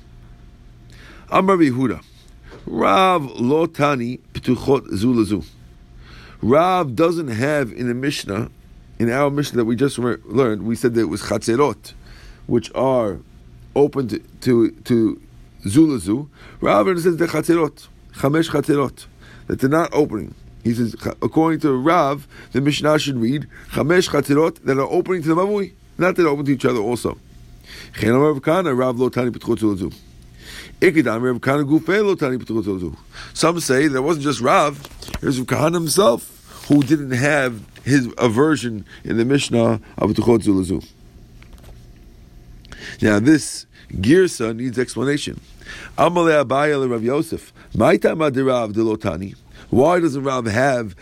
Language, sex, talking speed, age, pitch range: English, male, 125 wpm, 50-69, 110-150 Hz